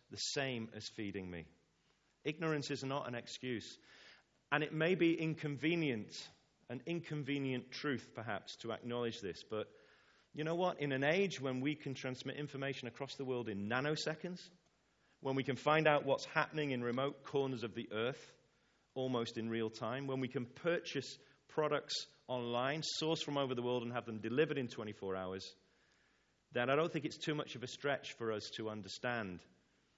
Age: 40-59